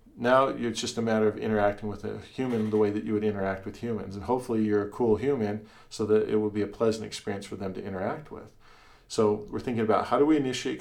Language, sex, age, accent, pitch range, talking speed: English, male, 40-59, American, 105-115 Hz, 250 wpm